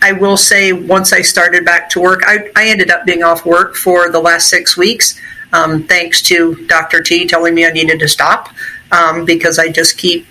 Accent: American